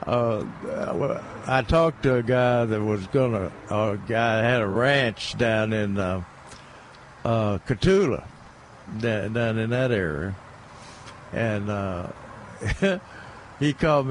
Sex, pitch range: male, 110-140 Hz